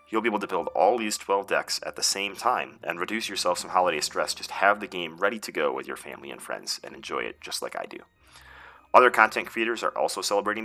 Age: 30-49